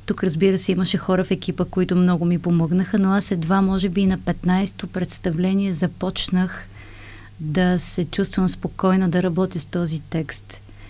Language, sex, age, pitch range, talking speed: Bulgarian, female, 30-49, 165-195 Hz, 165 wpm